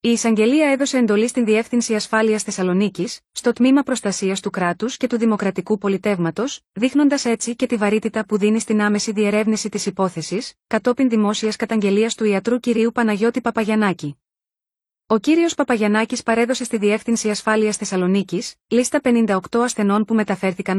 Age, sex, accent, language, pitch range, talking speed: 20-39, female, native, Greek, 200-240 Hz, 145 wpm